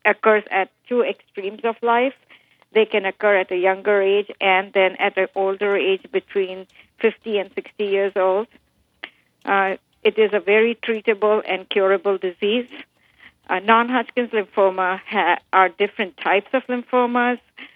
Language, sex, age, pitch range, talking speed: English, female, 50-69, 185-220 Hz, 140 wpm